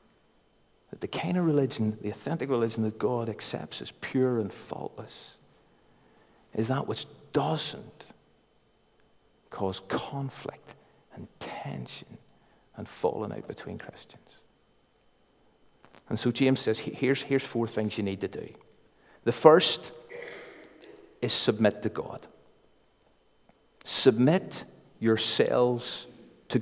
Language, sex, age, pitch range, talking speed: English, male, 50-69, 110-150 Hz, 110 wpm